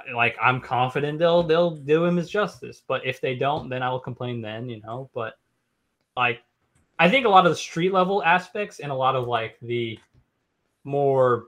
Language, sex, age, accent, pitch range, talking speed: English, male, 20-39, American, 115-150 Hz, 200 wpm